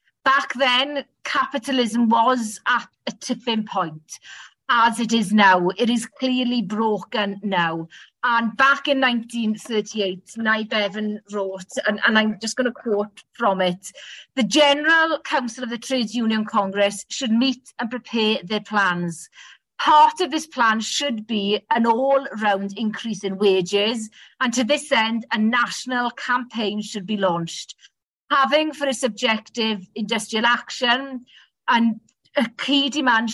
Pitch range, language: 205-250 Hz, English